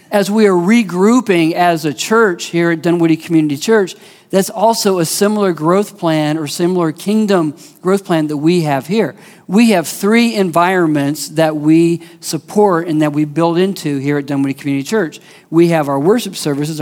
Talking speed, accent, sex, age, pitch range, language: 175 wpm, American, male, 50-69, 150-190 Hz, English